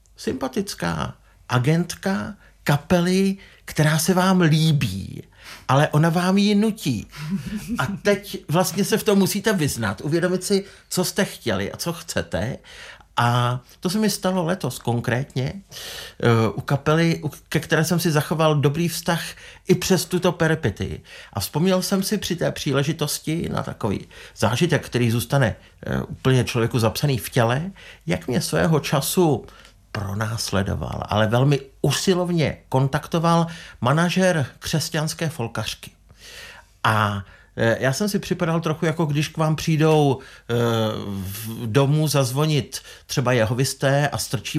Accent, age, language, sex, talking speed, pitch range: native, 50-69, Czech, male, 125 wpm, 115-170 Hz